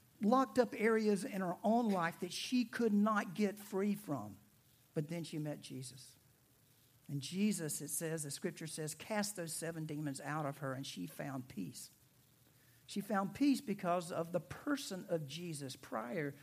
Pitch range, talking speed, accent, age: 145-195 Hz, 170 wpm, American, 60-79